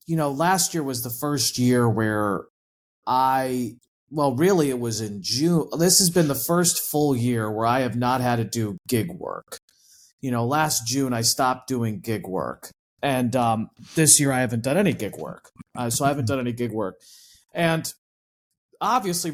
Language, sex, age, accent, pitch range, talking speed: English, male, 30-49, American, 125-160 Hz, 190 wpm